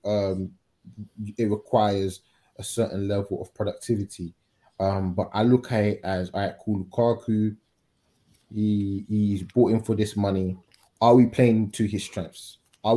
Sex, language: male, English